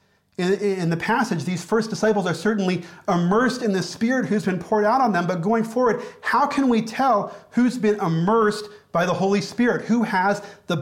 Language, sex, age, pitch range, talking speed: English, male, 40-59, 180-225 Hz, 195 wpm